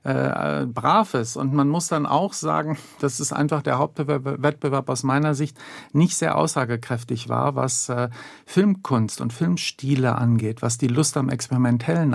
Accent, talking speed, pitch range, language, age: German, 160 wpm, 120-145 Hz, German, 50-69